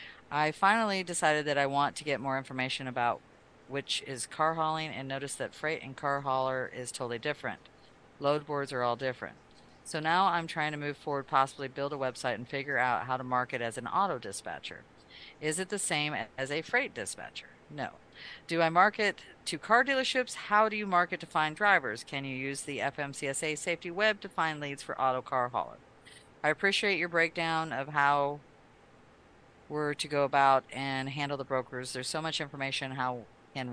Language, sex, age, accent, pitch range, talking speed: English, female, 50-69, American, 125-155 Hz, 190 wpm